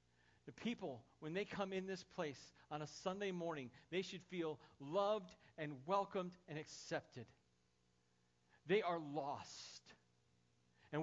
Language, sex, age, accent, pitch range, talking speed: English, male, 40-59, American, 145-210 Hz, 125 wpm